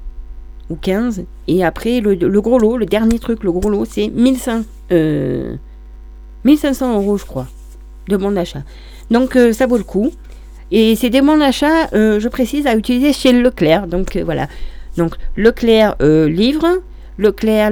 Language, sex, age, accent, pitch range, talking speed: French, female, 40-59, French, 165-220 Hz, 165 wpm